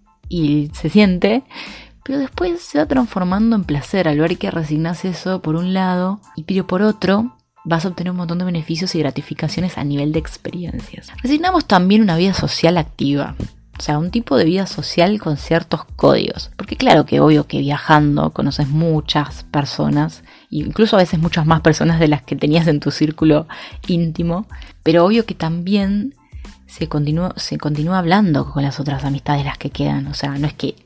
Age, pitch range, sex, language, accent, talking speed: 20-39, 145-180 Hz, female, Spanish, Argentinian, 185 wpm